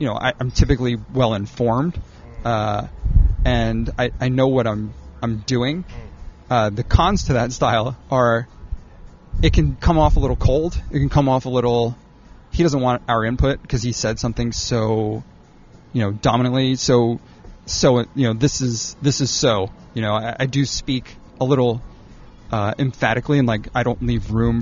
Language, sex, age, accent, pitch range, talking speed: English, male, 30-49, American, 115-140 Hz, 180 wpm